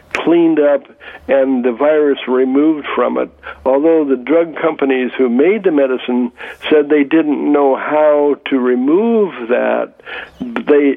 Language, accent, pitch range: English, American, 130-160 Hz